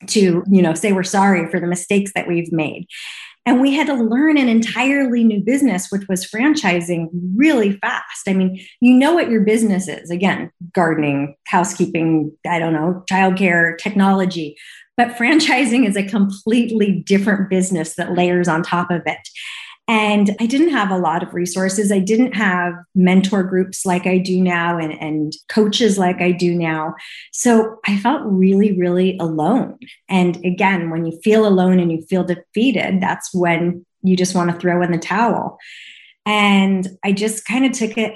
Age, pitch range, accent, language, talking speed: 30-49, 175-220 Hz, American, English, 175 wpm